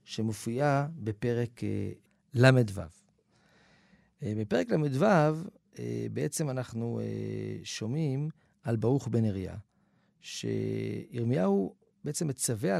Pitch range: 115-185 Hz